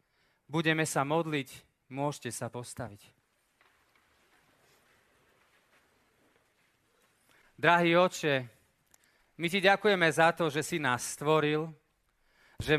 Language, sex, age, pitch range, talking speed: Slovak, male, 30-49, 140-180 Hz, 85 wpm